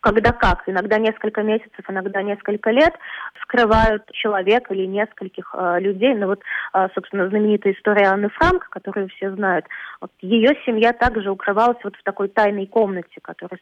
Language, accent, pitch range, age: Russian, native, 195-225 Hz, 20-39